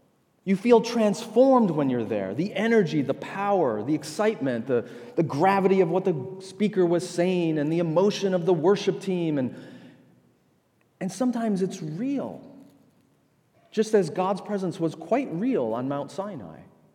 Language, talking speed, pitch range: English, 150 wpm, 150-195 Hz